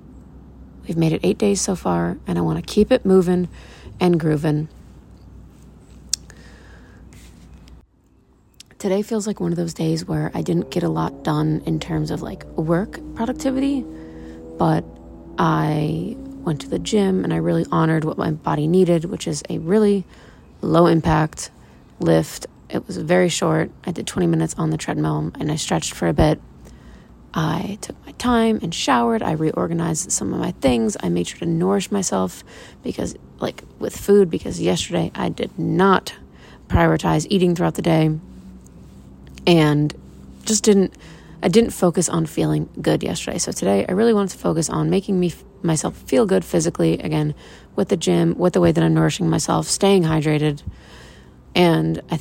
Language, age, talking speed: English, 30-49, 170 wpm